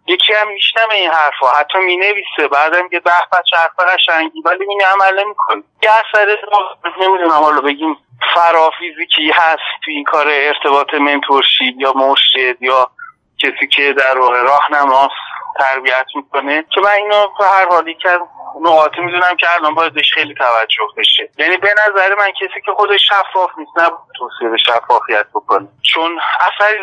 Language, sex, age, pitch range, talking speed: Persian, male, 30-49, 150-195 Hz, 155 wpm